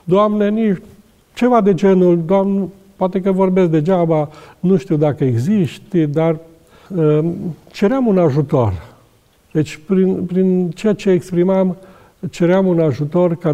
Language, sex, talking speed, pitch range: Romanian, male, 130 wpm, 130-180 Hz